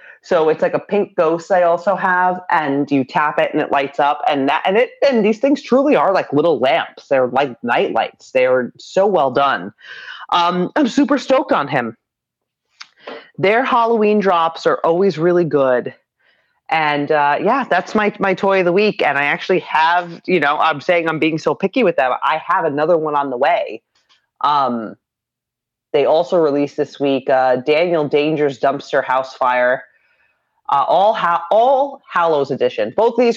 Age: 30-49